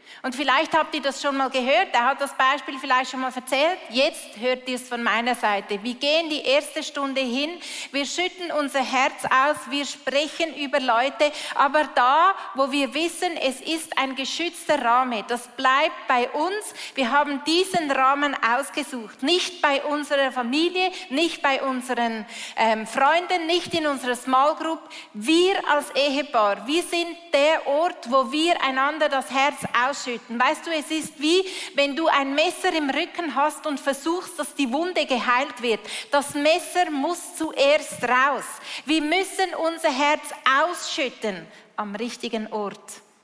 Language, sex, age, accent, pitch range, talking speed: German, female, 30-49, Austrian, 250-315 Hz, 160 wpm